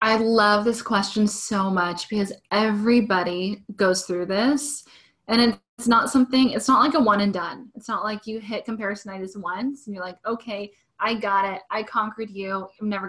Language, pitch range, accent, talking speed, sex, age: English, 185-225 Hz, American, 190 wpm, female, 10-29